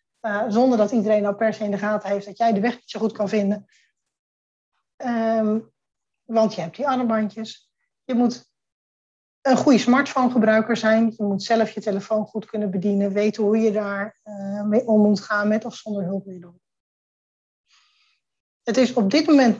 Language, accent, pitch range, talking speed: Dutch, Dutch, 210-240 Hz, 175 wpm